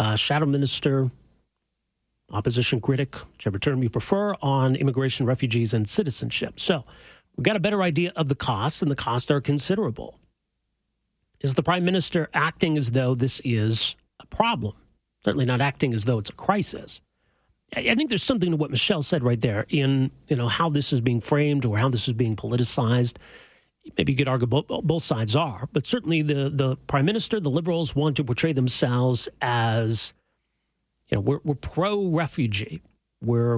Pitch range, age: 120-160 Hz, 40-59